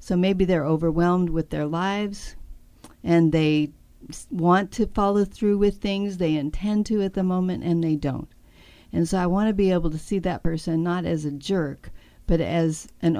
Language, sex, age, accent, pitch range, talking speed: English, female, 50-69, American, 155-195 Hz, 190 wpm